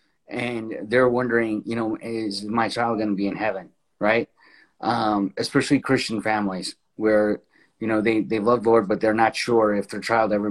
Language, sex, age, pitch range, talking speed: English, male, 30-49, 110-140 Hz, 190 wpm